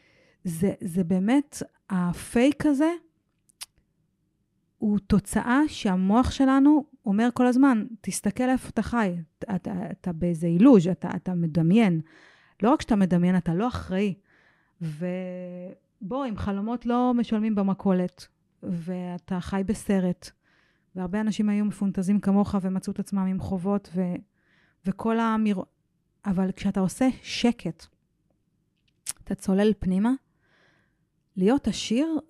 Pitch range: 180-245 Hz